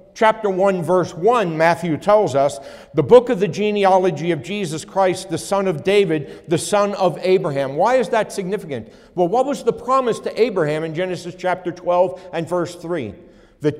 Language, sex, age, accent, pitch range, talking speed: English, male, 60-79, American, 140-205 Hz, 185 wpm